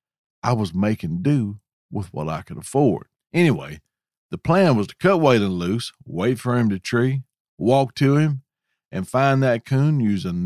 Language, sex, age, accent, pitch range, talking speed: English, male, 50-69, American, 100-145 Hz, 170 wpm